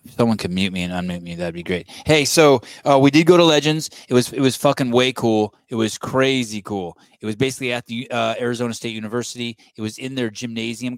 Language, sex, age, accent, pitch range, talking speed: English, male, 20-39, American, 105-125 Hz, 240 wpm